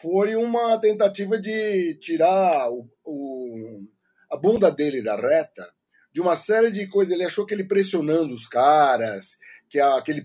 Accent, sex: Brazilian, male